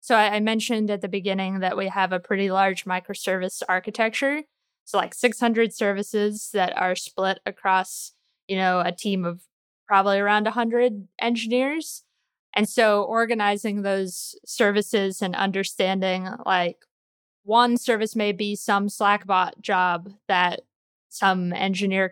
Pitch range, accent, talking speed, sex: 190-215 Hz, American, 135 wpm, female